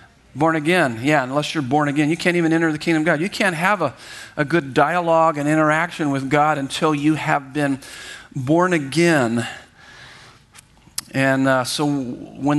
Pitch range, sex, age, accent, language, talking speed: 130-165 Hz, male, 50-69, American, English, 170 wpm